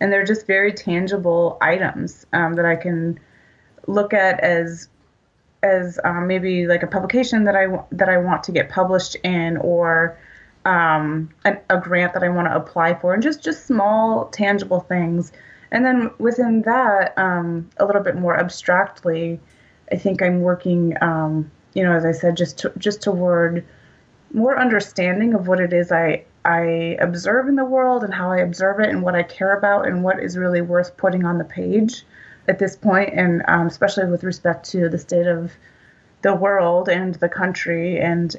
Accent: American